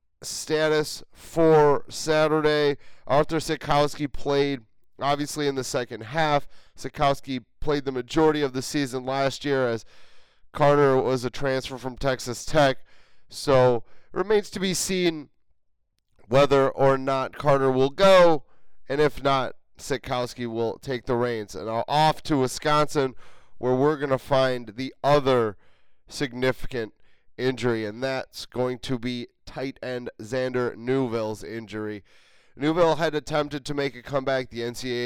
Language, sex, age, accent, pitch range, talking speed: English, male, 30-49, American, 120-145 Hz, 135 wpm